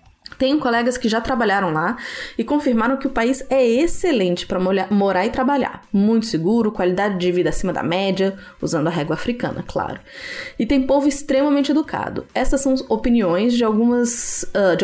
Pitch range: 185-255 Hz